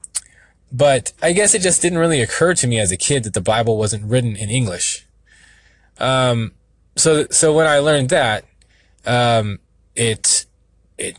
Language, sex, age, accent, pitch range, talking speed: English, male, 20-39, American, 100-130 Hz, 160 wpm